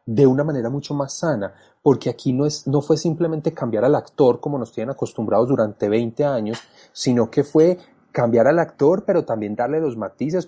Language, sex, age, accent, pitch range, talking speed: Spanish, male, 30-49, Colombian, 115-145 Hz, 195 wpm